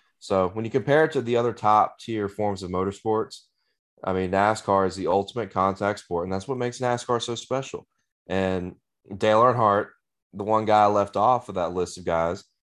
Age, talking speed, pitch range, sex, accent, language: 20-39, 190 wpm, 95-115 Hz, male, American, English